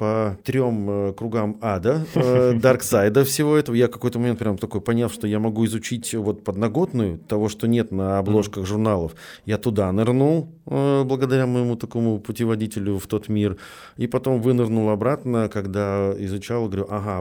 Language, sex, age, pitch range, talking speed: Russian, male, 30-49, 100-120 Hz, 150 wpm